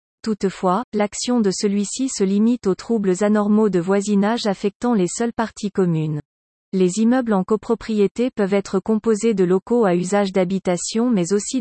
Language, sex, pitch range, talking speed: French, female, 195-230 Hz, 155 wpm